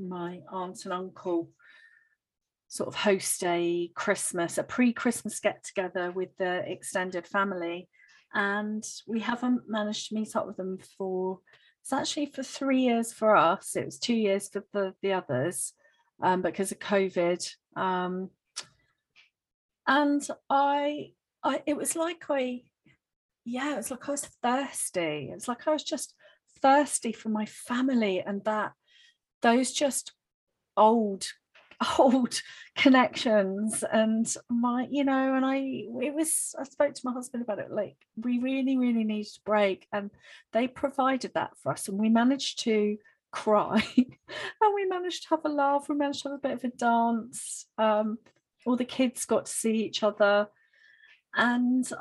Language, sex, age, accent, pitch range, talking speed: English, female, 40-59, British, 205-270 Hz, 160 wpm